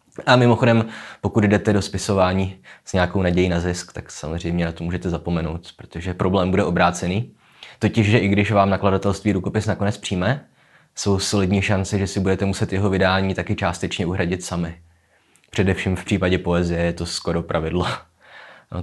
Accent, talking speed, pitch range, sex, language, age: native, 165 wpm, 90-95 Hz, male, Czech, 20-39